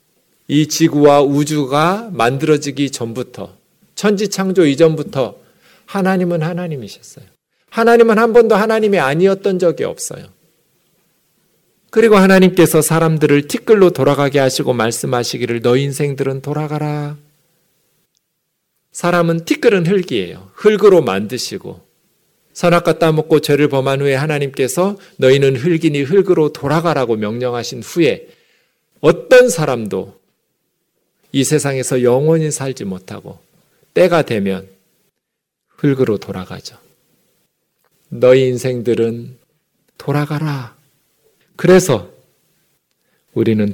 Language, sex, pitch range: Korean, male, 130-180 Hz